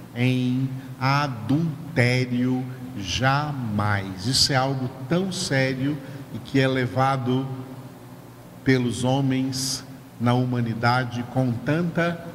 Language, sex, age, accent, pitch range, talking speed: Portuguese, male, 50-69, Brazilian, 120-150 Hz, 90 wpm